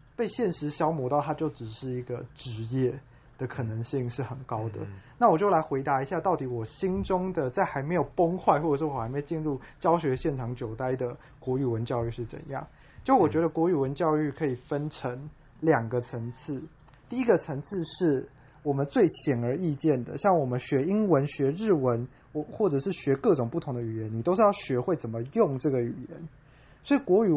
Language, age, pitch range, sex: Chinese, 20-39, 130-170 Hz, male